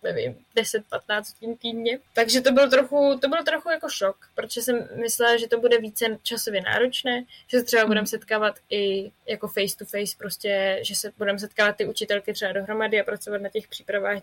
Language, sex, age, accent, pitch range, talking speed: Czech, female, 20-39, native, 205-235 Hz, 190 wpm